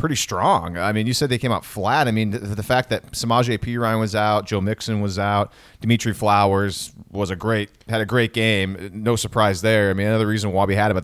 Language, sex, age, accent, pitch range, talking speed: English, male, 30-49, American, 105-125 Hz, 250 wpm